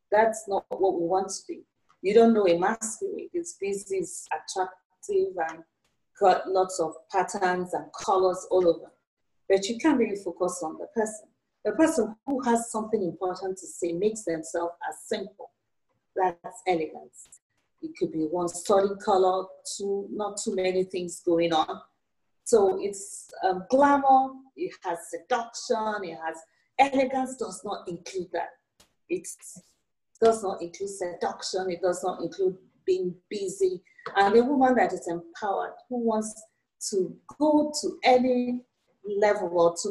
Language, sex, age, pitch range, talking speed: English, female, 40-59, 180-250 Hz, 145 wpm